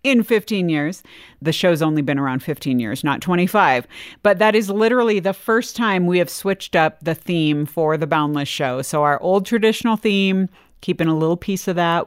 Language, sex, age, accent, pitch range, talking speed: English, female, 50-69, American, 155-210 Hz, 200 wpm